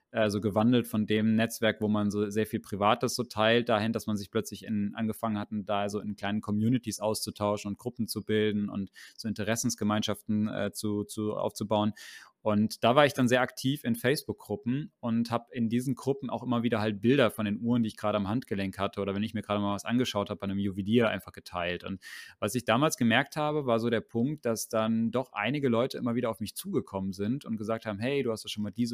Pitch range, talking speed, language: 105-125 Hz, 225 wpm, German